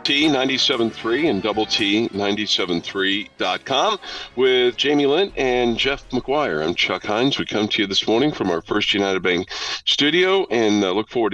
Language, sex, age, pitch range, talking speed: English, male, 50-69, 95-140 Hz, 160 wpm